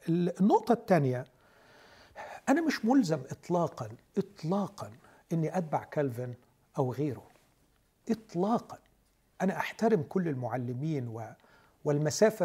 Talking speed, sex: 85 wpm, male